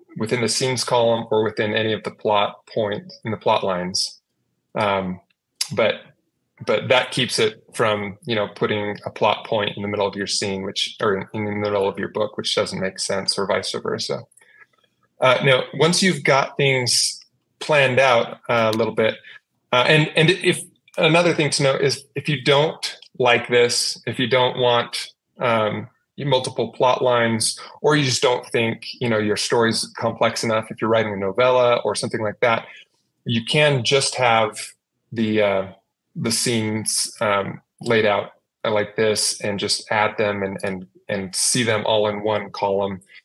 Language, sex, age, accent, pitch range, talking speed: English, male, 20-39, American, 105-135 Hz, 180 wpm